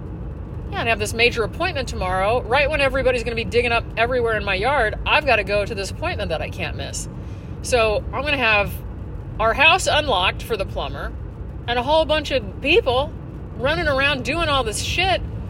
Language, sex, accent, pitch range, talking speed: English, female, American, 195-300 Hz, 205 wpm